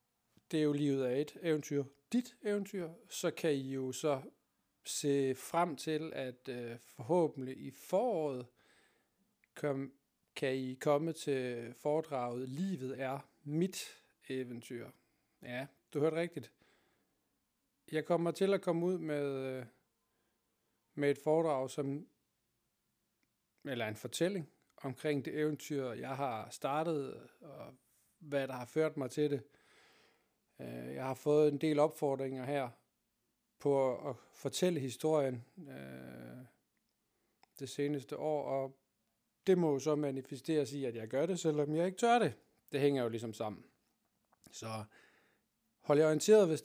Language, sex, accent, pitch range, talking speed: Danish, male, native, 130-155 Hz, 135 wpm